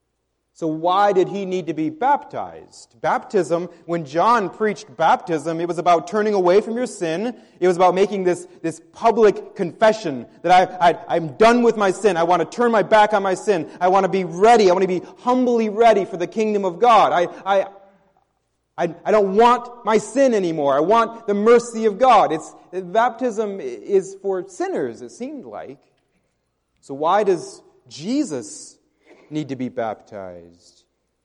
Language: English